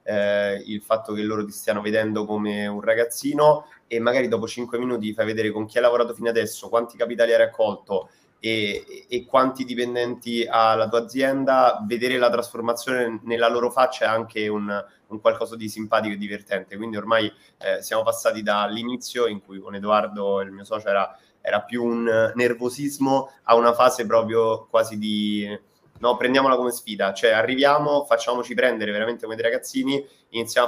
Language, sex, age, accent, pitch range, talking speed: Italian, male, 20-39, native, 105-125 Hz, 175 wpm